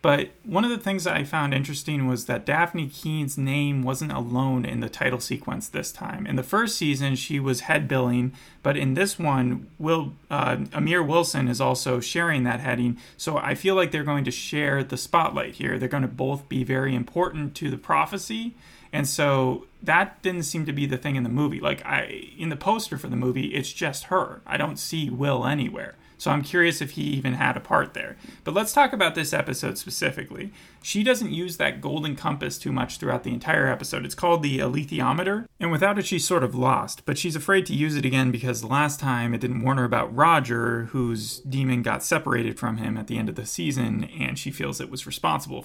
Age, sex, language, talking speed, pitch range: 30-49, male, English, 220 wpm, 125-165 Hz